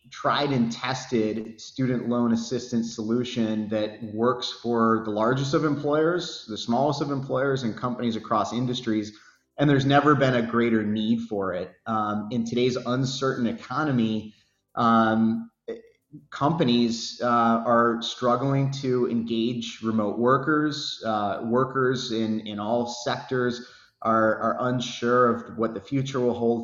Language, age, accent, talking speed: English, 30-49, American, 135 wpm